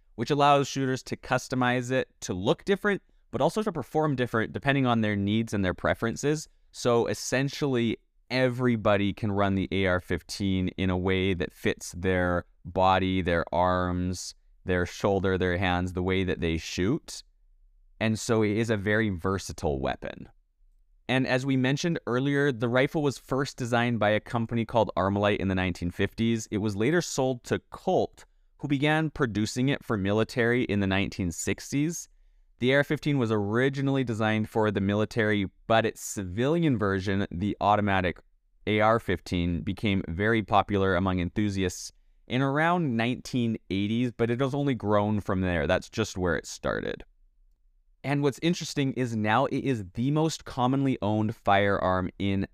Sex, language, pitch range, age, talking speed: male, English, 95-125 Hz, 20-39, 155 wpm